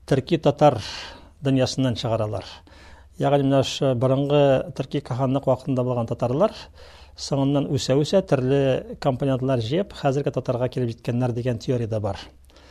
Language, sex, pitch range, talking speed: Russian, male, 125-155 Hz, 90 wpm